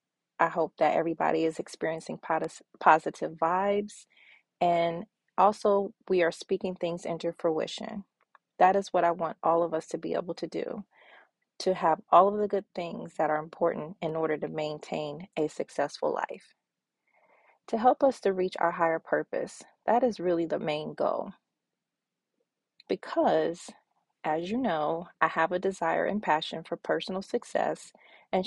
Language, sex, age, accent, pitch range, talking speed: English, female, 30-49, American, 165-200 Hz, 155 wpm